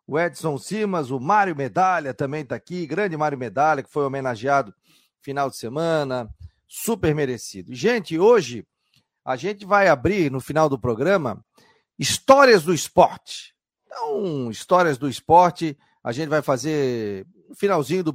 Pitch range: 140-185 Hz